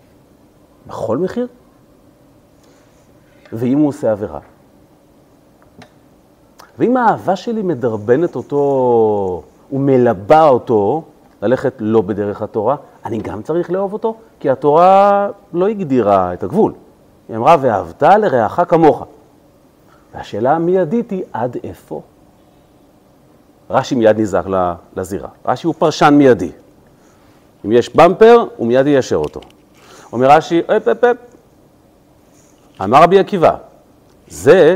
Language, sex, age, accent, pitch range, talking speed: Hebrew, male, 40-59, native, 120-195 Hz, 100 wpm